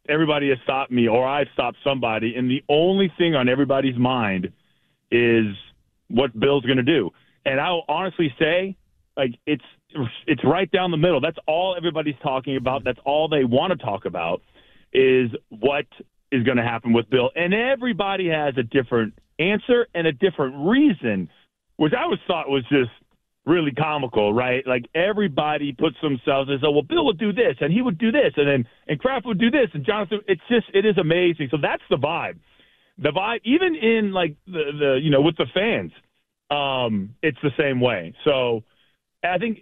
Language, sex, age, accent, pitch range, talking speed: English, male, 40-59, American, 135-190 Hz, 190 wpm